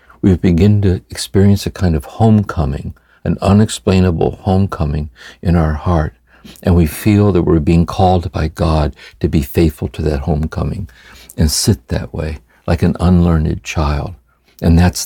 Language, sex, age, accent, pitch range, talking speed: English, male, 60-79, American, 75-90 Hz, 155 wpm